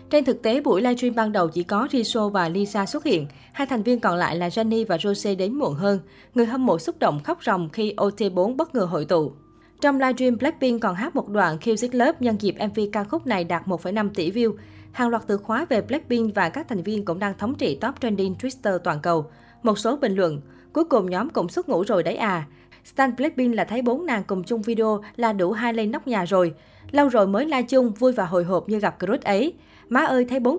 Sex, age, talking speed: female, 20-39, 245 wpm